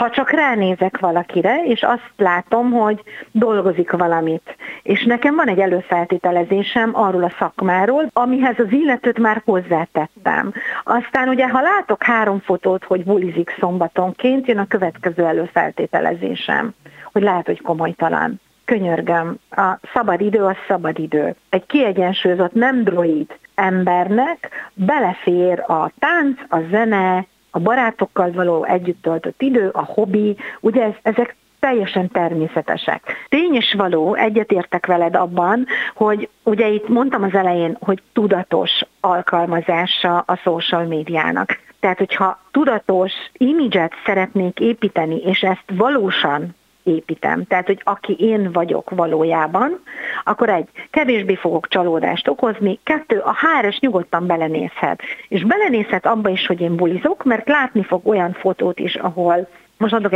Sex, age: female, 50-69